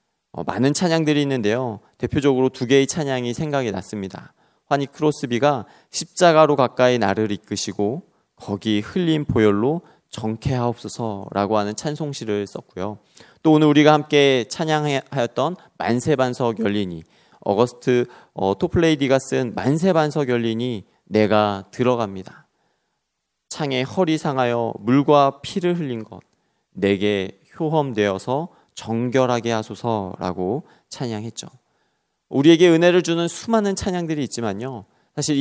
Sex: male